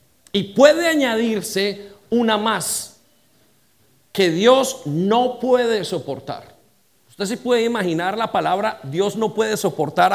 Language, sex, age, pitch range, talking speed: English, male, 40-59, 185-225 Hz, 125 wpm